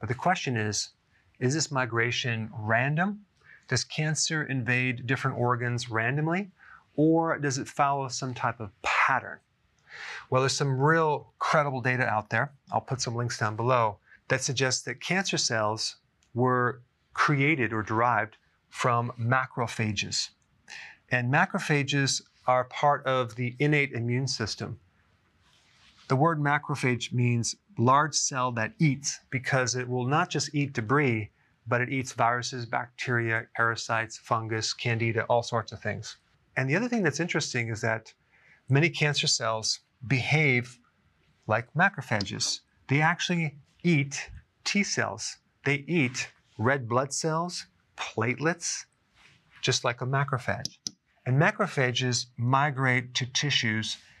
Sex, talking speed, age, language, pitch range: male, 130 wpm, 30-49, English, 115-145 Hz